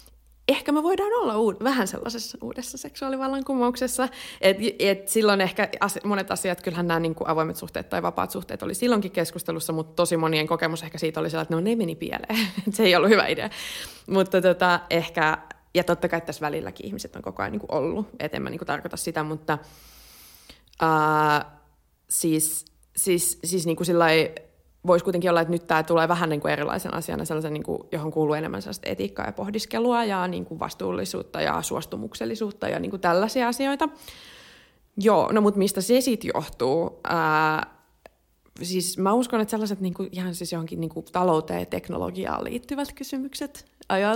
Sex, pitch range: female, 160-225 Hz